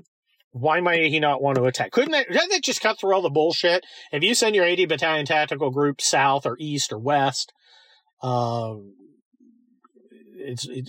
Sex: male